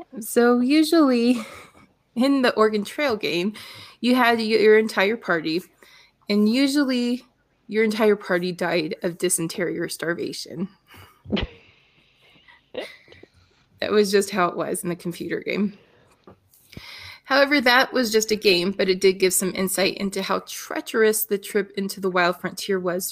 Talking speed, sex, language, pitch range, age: 140 wpm, female, English, 180-235 Hz, 20-39